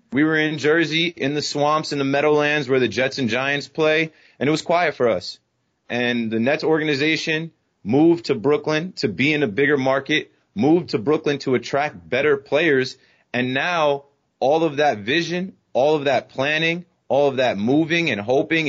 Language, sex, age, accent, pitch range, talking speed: English, male, 30-49, American, 120-155 Hz, 185 wpm